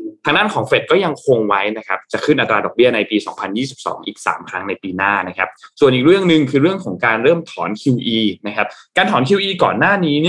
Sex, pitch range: male, 105-150 Hz